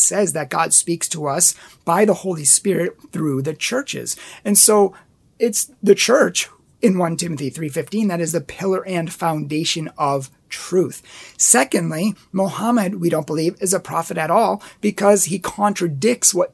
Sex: male